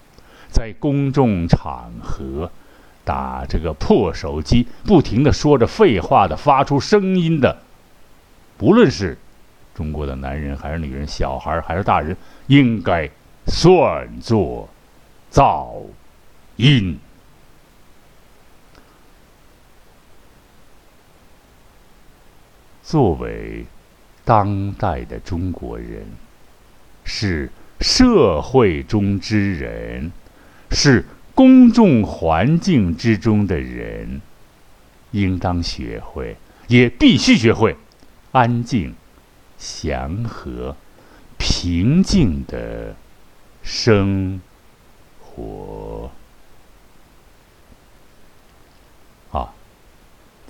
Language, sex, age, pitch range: Chinese, male, 60-79, 75-110 Hz